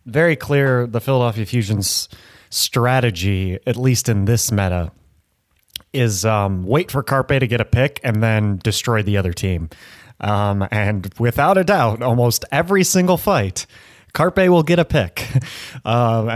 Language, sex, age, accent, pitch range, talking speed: English, male, 30-49, American, 100-135 Hz, 150 wpm